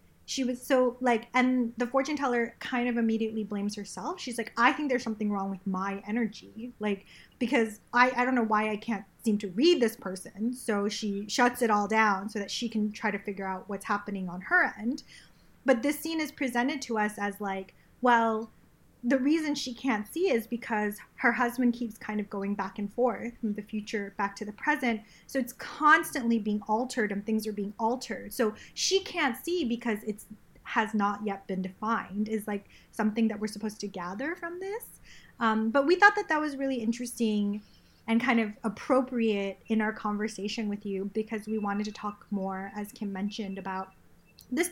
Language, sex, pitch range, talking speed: English, female, 205-250 Hz, 200 wpm